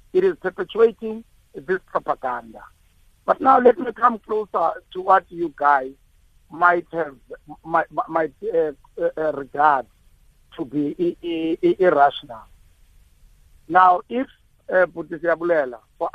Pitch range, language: 140-185 Hz, English